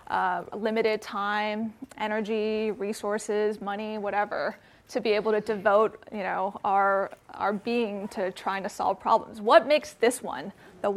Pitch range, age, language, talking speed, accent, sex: 195-225 Hz, 20-39, English, 150 wpm, American, female